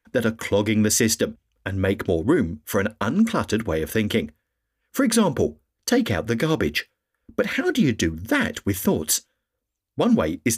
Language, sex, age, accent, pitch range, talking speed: English, male, 40-59, British, 95-120 Hz, 180 wpm